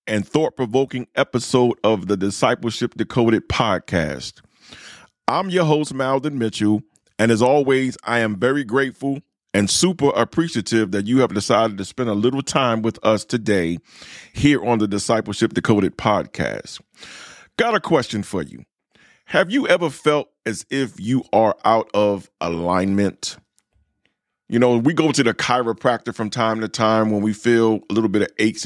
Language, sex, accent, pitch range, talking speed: English, male, American, 110-130 Hz, 160 wpm